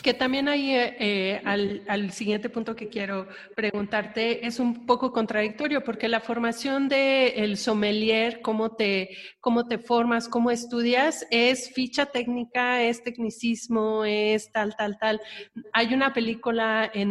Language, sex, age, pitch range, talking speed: Spanish, female, 30-49, 210-255 Hz, 140 wpm